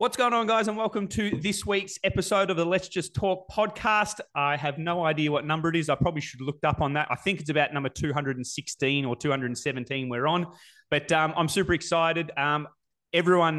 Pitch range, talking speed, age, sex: 130-170 Hz, 215 wpm, 20-39, male